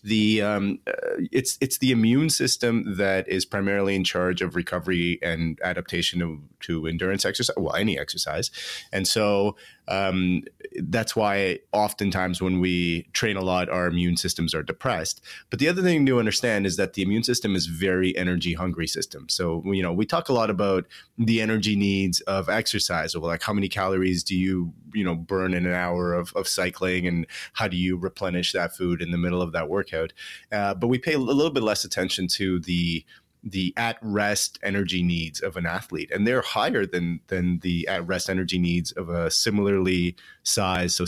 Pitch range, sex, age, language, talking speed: 85-100 Hz, male, 30-49, English, 190 wpm